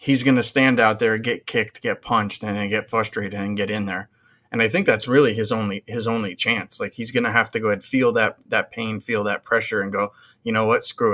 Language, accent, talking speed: English, American, 265 wpm